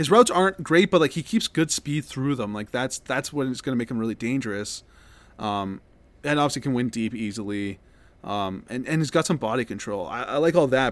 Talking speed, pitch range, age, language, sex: 235 wpm, 110-150 Hz, 20-39, English, male